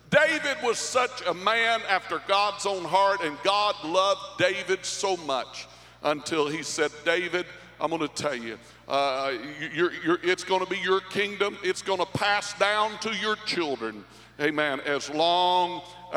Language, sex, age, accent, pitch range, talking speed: English, male, 60-79, American, 160-220 Hz, 155 wpm